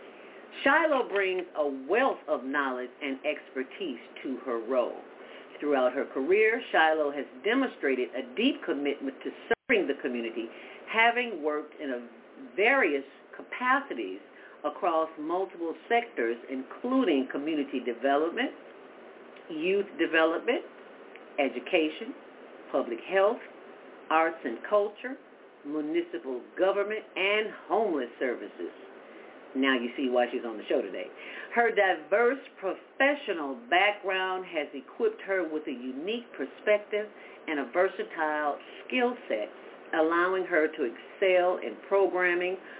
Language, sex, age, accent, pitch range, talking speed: English, female, 50-69, American, 150-230 Hz, 110 wpm